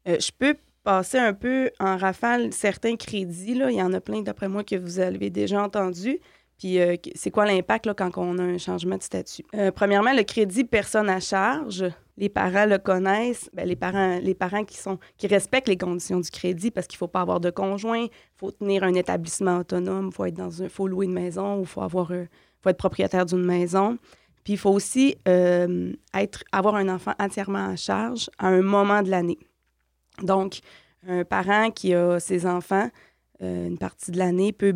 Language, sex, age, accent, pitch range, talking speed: French, female, 20-39, Canadian, 180-210 Hz, 205 wpm